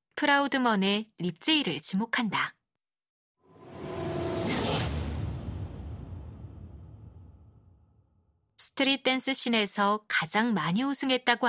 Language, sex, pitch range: Korean, female, 185-265 Hz